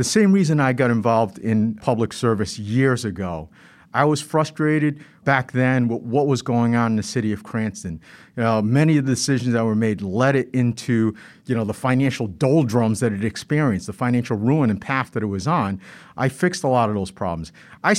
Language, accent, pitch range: English, American, 120-160 Hz